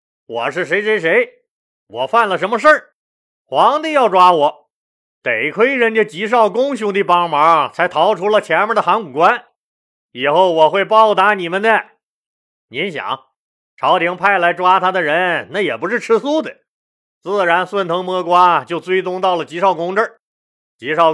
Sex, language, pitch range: male, Chinese, 165-210 Hz